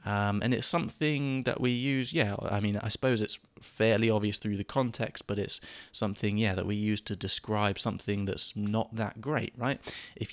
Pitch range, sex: 100-115 Hz, male